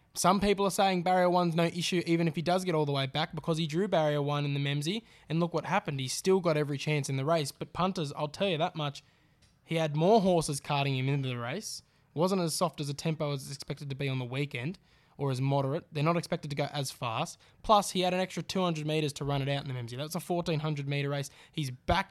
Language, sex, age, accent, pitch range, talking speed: English, male, 10-29, Australian, 145-170 Hz, 270 wpm